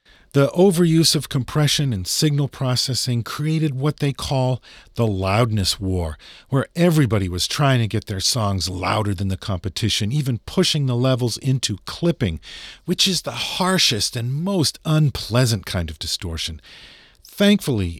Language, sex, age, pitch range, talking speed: English, male, 50-69, 90-135 Hz, 145 wpm